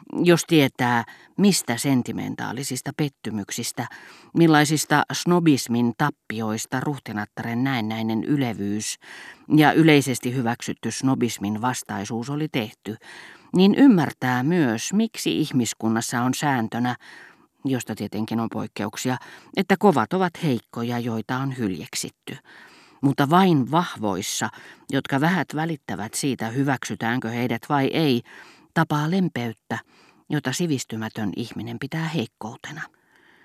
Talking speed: 95 wpm